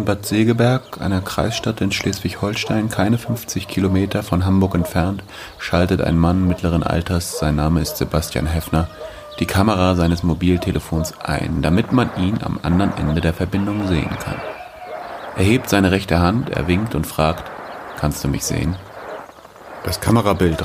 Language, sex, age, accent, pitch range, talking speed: German, male, 30-49, German, 85-110 Hz, 155 wpm